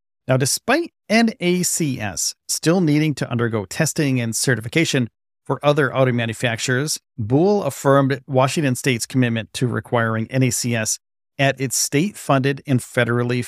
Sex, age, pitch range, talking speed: male, 40-59, 115-150 Hz, 125 wpm